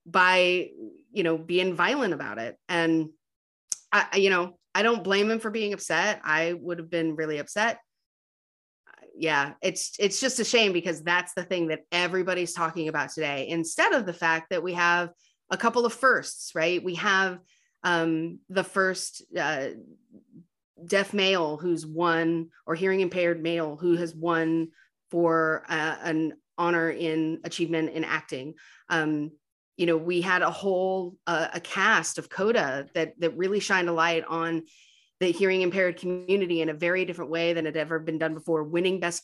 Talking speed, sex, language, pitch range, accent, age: 175 wpm, female, English, 160-190 Hz, American, 30-49